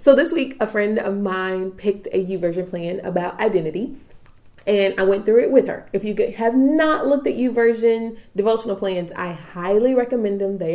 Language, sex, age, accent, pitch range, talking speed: English, female, 30-49, American, 185-235 Hz, 190 wpm